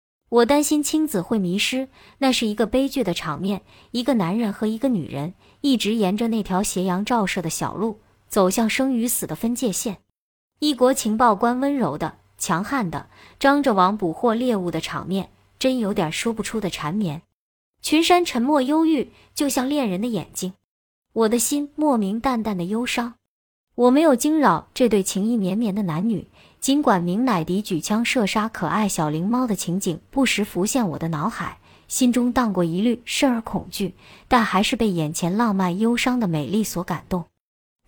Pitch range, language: 185-250 Hz, Chinese